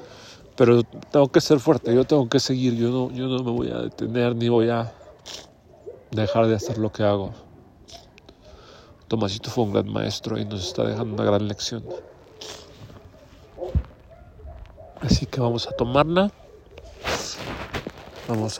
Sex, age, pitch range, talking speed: male, 40-59, 110-125 Hz, 140 wpm